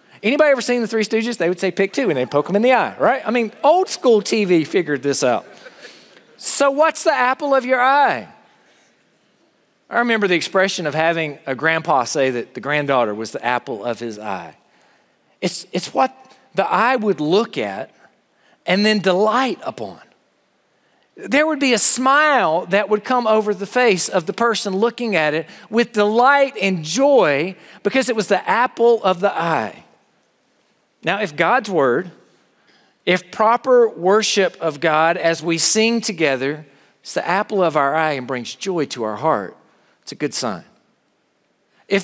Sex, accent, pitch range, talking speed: male, American, 165-240 Hz, 175 wpm